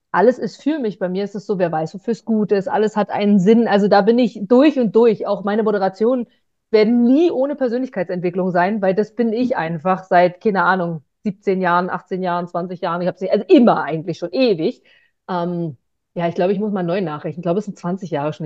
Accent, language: German, German